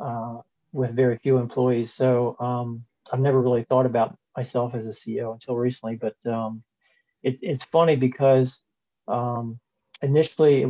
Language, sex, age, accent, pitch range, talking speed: English, male, 40-59, American, 115-130 Hz, 145 wpm